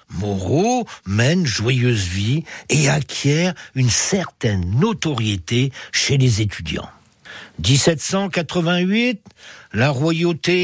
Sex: male